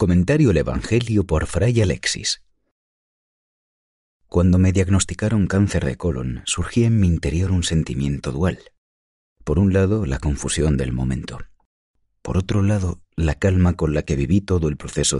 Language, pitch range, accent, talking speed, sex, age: Spanish, 70-95 Hz, Spanish, 150 wpm, male, 40-59